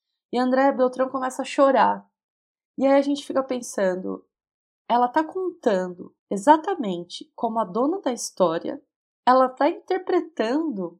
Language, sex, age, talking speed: Portuguese, female, 20-39, 130 wpm